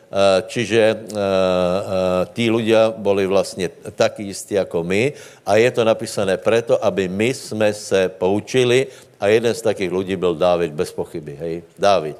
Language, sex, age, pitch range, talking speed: Slovak, male, 60-79, 95-110 Hz, 150 wpm